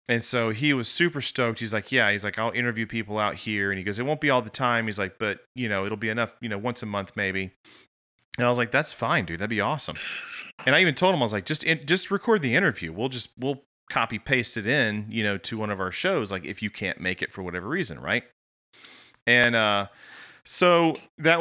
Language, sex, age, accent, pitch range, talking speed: English, male, 30-49, American, 95-125 Hz, 250 wpm